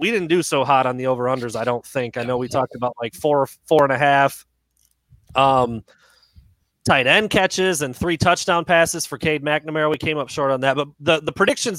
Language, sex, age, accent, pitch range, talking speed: English, male, 30-49, American, 135-170 Hz, 220 wpm